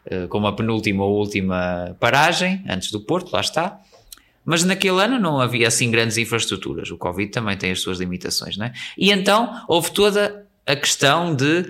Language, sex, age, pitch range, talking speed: Portuguese, male, 20-39, 105-150 Hz, 180 wpm